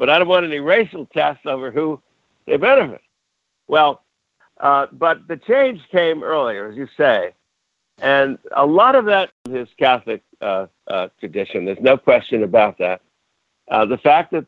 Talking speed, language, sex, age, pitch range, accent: 165 wpm, English, male, 60-79, 115-155 Hz, American